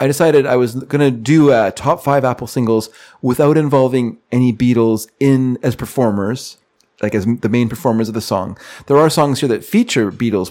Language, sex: English, male